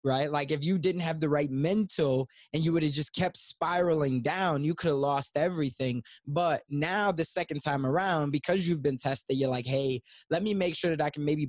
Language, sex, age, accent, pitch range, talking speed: English, male, 20-39, American, 140-175 Hz, 225 wpm